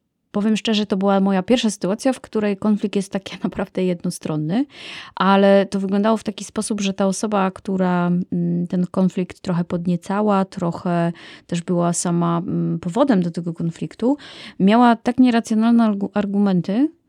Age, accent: 20-39, native